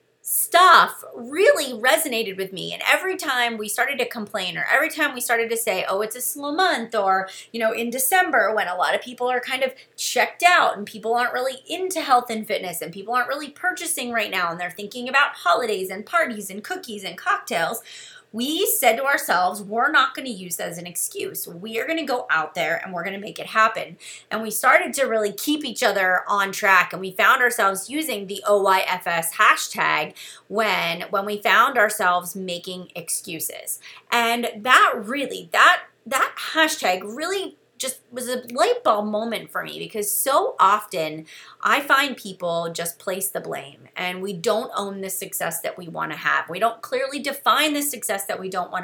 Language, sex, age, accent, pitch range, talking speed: English, female, 30-49, American, 190-275 Hz, 200 wpm